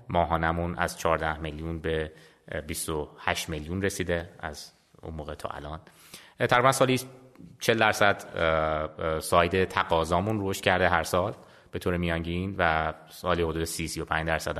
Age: 30-49